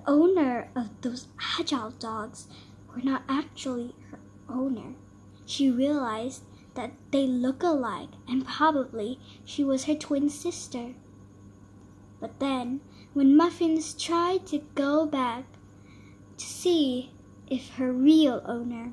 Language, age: English, 10-29